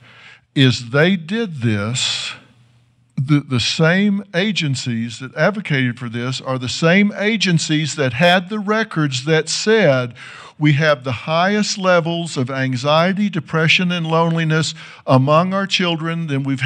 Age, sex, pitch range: 50-69, male, 130-170 Hz